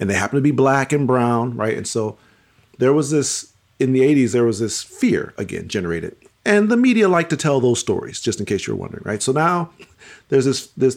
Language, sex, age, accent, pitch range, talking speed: English, male, 40-59, American, 110-145 Hz, 230 wpm